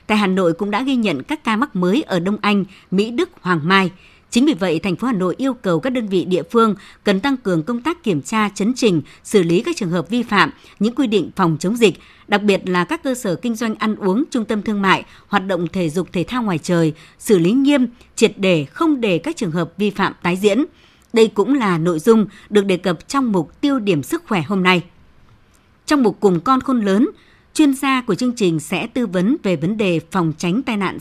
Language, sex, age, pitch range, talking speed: Vietnamese, male, 60-79, 180-235 Hz, 245 wpm